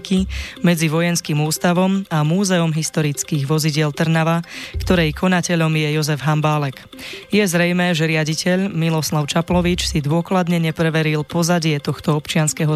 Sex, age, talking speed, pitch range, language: female, 20-39, 120 wpm, 155-175 Hz, Slovak